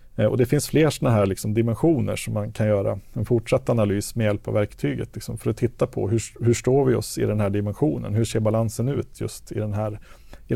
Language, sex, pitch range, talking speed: Swedish, male, 105-125 Hz, 240 wpm